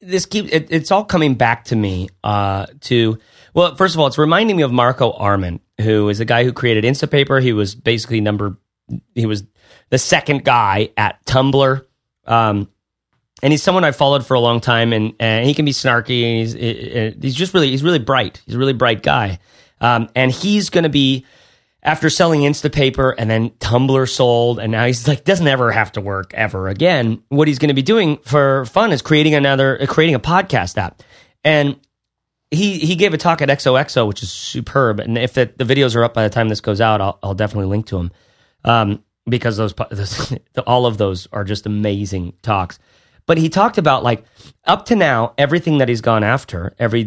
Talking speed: 205 wpm